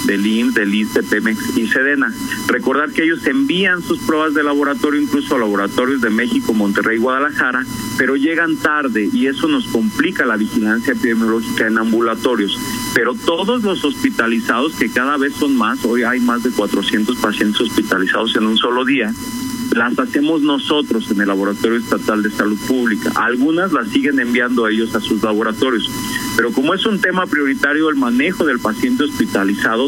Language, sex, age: Spanish, male, 40-59